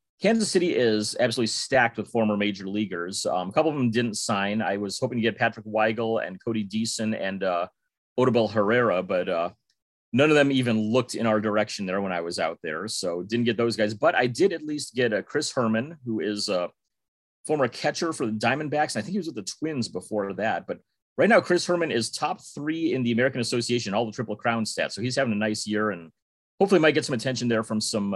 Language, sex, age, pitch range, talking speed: English, male, 30-49, 105-135 Hz, 235 wpm